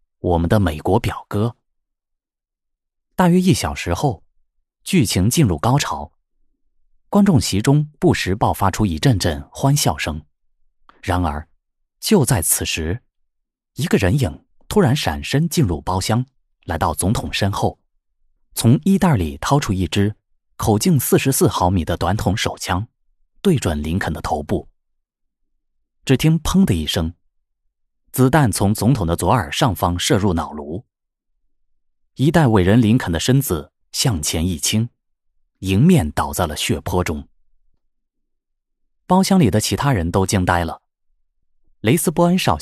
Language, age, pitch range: Chinese, 20-39, 85-140 Hz